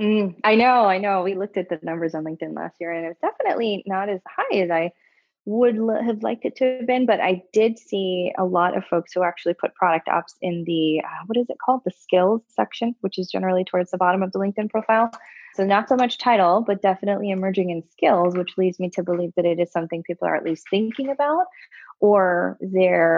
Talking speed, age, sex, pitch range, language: 235 wpm, 20-39, female, 165-200 Hz, English